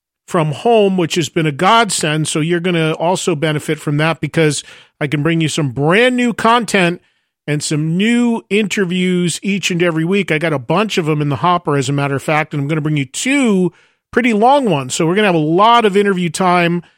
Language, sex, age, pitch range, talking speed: English, male, 40-59, 155-195 Hz, 235 wpm